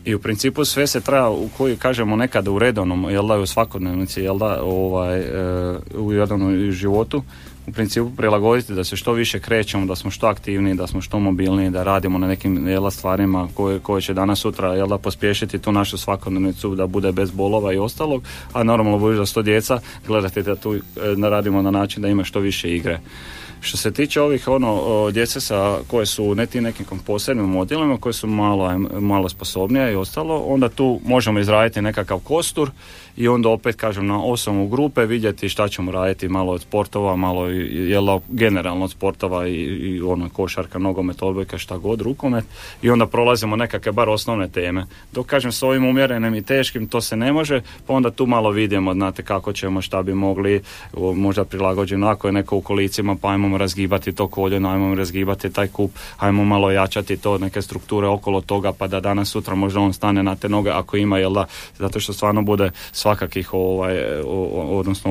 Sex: male